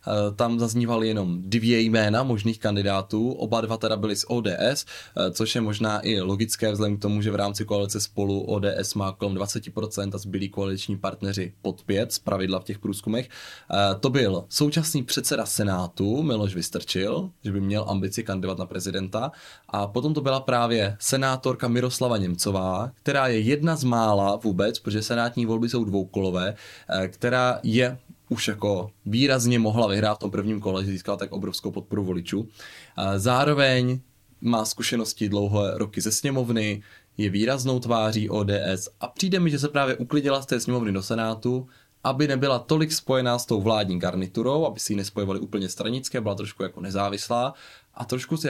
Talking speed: 165 wpm